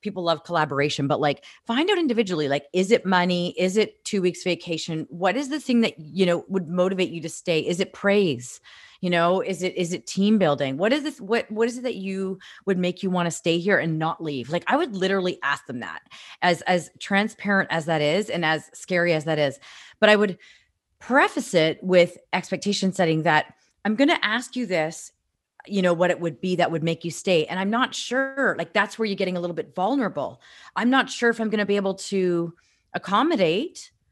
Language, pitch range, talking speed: English, 175-220 Hz, 225 wpm